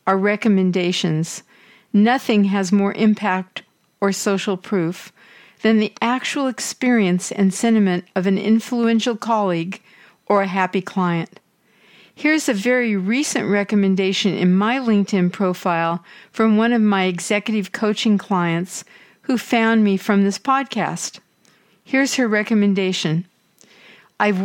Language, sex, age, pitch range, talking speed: English, female, 60-79, 195-230 Hz, 120 wpm